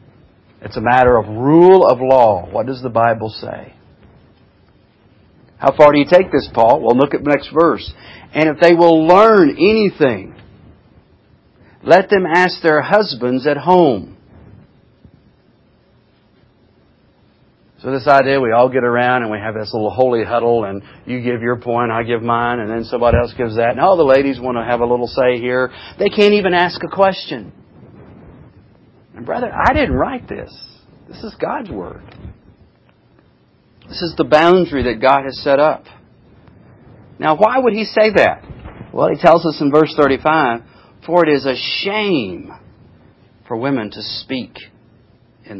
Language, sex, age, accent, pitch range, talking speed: English, male, 50-69, American, 115-155 Hz, 165 wpm